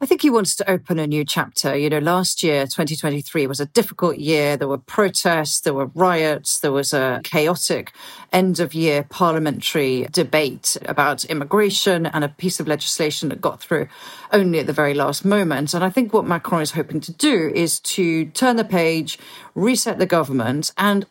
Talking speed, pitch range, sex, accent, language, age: 185 wpm, 155-205 Hz, female, British, English, 40-59